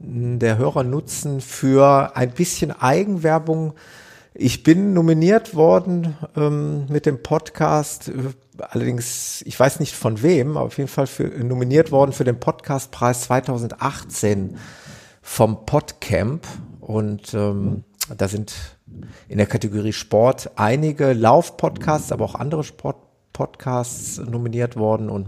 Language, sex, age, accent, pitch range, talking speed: German, male, 50-69, German, 110-150 Hz, 120 wpm